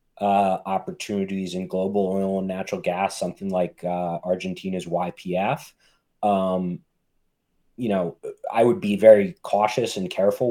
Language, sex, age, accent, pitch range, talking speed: English, male, 20-39, American, 90-110 Hz, 130 wpm